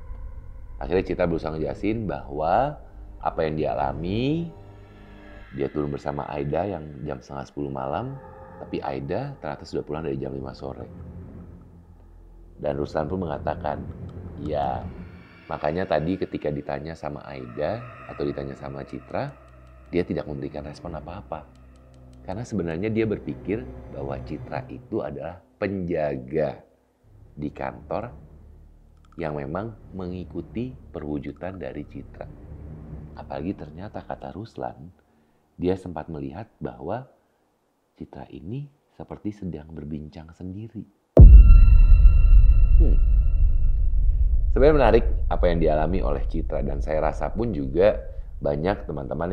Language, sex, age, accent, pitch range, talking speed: Indonesian, male, 30-49, native, 70-90 Hz, 110 wpm